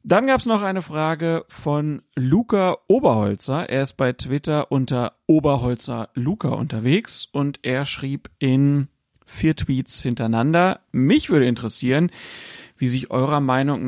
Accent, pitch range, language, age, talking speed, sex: German, 130-165 Hz, German, 40-59, 135 wpm, male